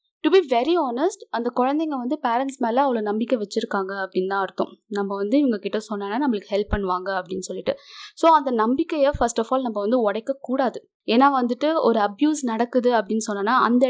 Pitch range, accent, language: 210-290 Hz, native, Tamil